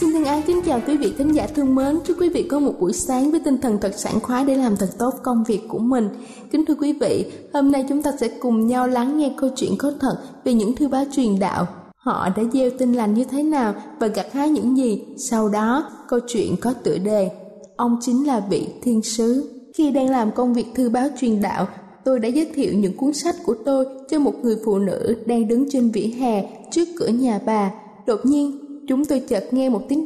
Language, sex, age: Thai, female, 20-39